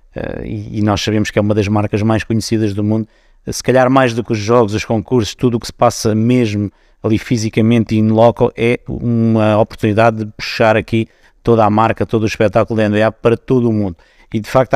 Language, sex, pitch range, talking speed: Portuguese, male, 110-120 Hz, 215 wpm